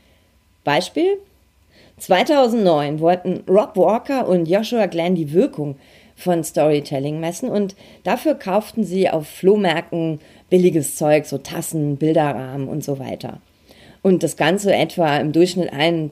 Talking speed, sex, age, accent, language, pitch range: 125 wpm, female, 40-59, German, German, 150-200 Hz